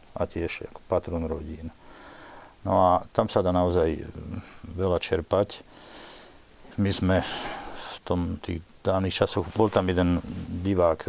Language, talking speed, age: Slovak, 130 wpm, 50-69